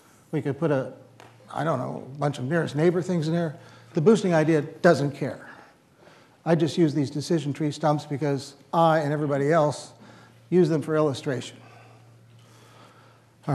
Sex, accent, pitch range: male, American, 130-165 Hz